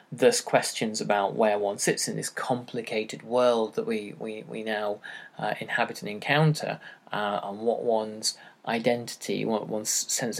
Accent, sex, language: British, male, English